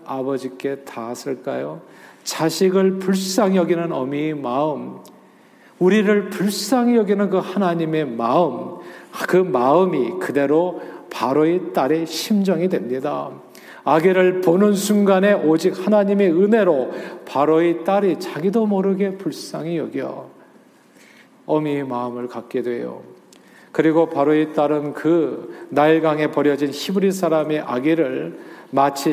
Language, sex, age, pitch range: Korean, male, 40-59, 145-190 Hz